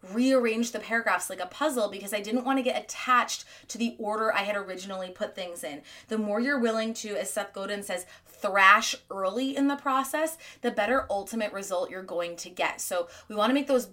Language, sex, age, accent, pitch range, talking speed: English, female, 20-39, American, 190-245 Hz, 215 wpm